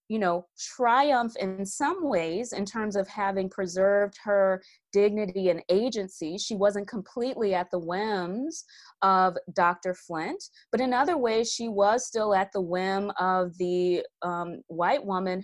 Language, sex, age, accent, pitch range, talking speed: English, female, 20-39, American, 180-230 Hz, 150 wpm